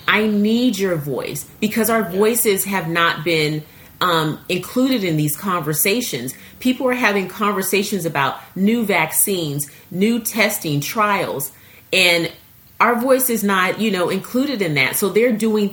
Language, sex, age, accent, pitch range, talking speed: English, female, 30-49, American, 145-190 Hz, 135 wpm